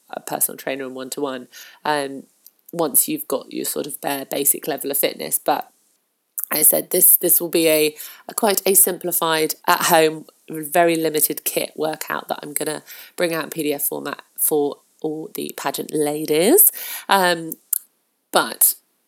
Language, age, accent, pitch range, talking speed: English, 30-49, British, 155-195 Hz, 155 wpm